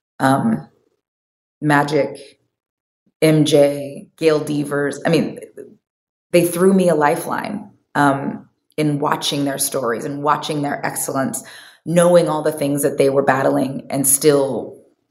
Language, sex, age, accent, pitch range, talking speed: English, female, 20-39, American, 140-165 Hz, 125 wpm